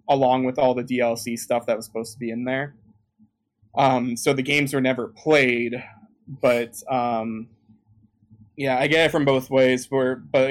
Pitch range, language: 110-135 Hz, English